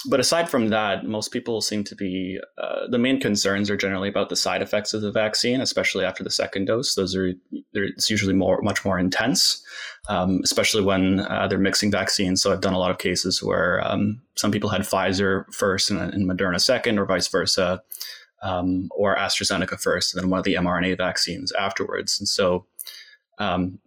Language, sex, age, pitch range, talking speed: English, male, 20-39, 95-115 Hz, 195 wpm